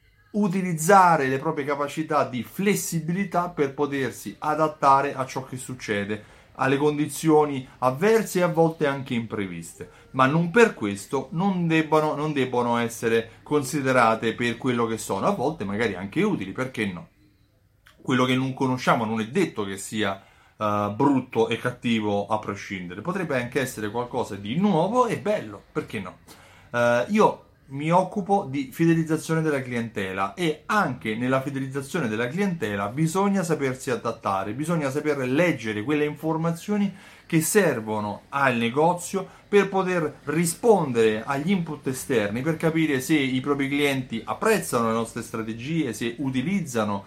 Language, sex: Italian, male